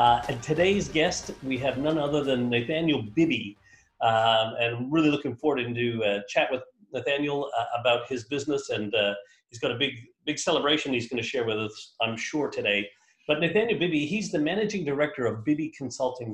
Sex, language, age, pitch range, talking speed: male, English, 40-59, 125-170 Hz, 190 wpm